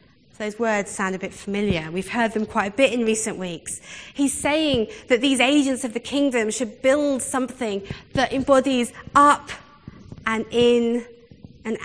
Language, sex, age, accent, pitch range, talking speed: English, female, 20-39, British, 200-260 Hz, 160 wpm